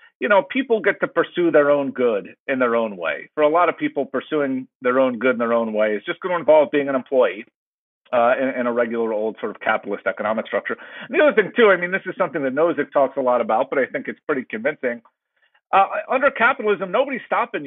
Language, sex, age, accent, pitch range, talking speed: English, male, 50-69, American, 135-200 Hz, 240 wpm